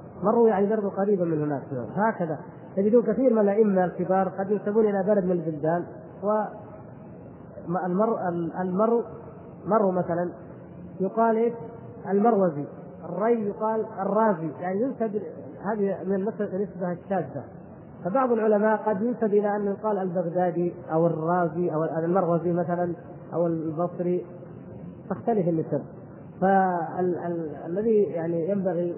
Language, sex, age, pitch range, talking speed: Arabic, female, 30-49, 170-210 Hz, 115 wpm